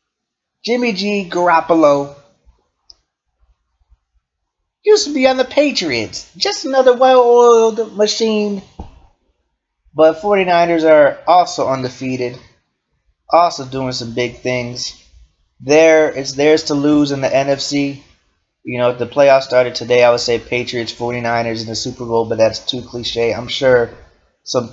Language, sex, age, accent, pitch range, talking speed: English, male, 30-49, American, 125-205 Hz, 130 wpm